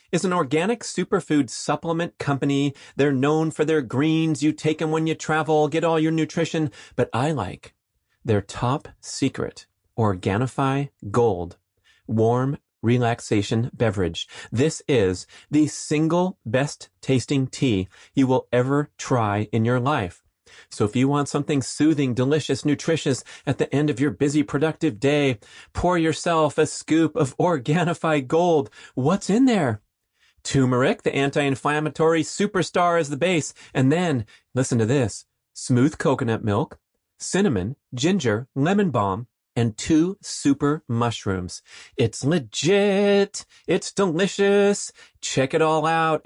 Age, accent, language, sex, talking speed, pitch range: 30-49, American, English, male, 135 wpm, 125-160 Hz